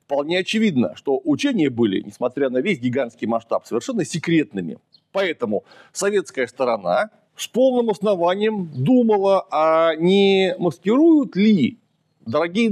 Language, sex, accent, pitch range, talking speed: Russian, male, native, 145-210 Hz, 115 wpm